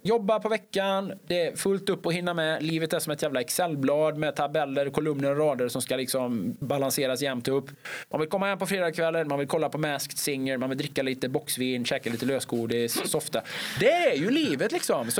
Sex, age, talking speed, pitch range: male, 20-39, 215 wpm, 135-175 Hz